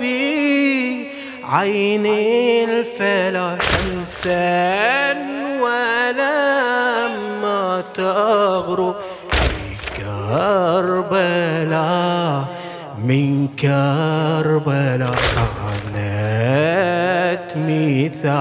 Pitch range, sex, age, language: 180-240 Hz, male, 30-49, English